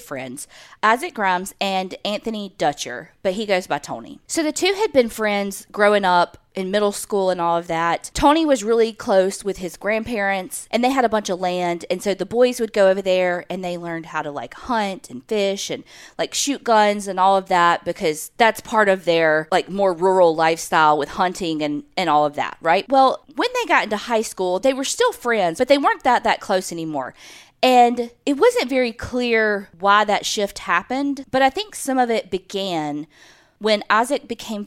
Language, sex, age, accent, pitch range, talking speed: English, female, 20-39, American, 180-250 Hz, 205 wpm